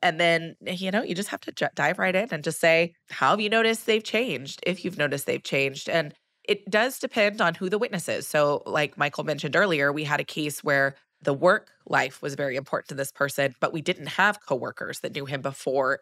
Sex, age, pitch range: female, 20-39, 145-205 Hz